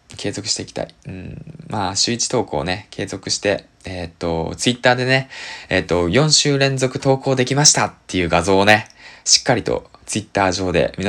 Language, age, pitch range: Japanese, 20-39, 90-135 Hz